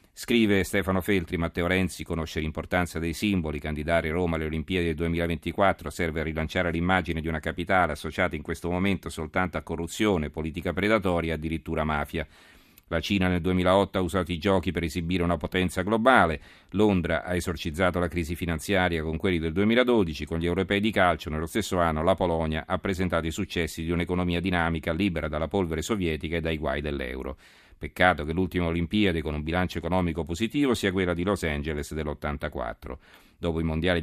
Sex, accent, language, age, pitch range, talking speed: male, native, Italian, 40-59, 80-95 Hz, 175 wpm